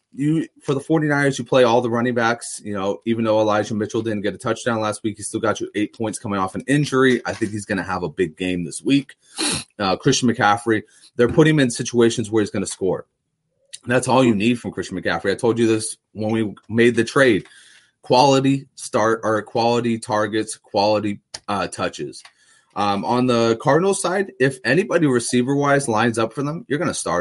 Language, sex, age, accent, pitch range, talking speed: English, male, 30-49, American, 100-125 Hz, 210 wpm